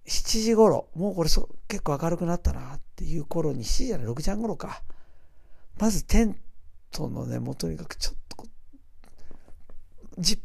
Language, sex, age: Japanese, male, 50-69